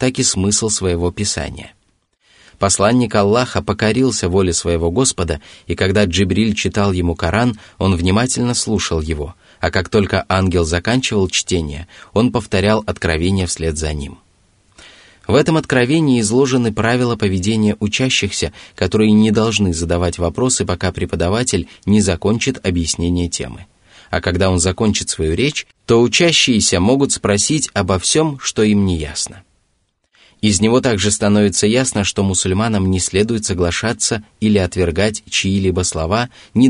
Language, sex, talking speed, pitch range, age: Russian, male, 135 wpm, 90-110 Hz, 20-39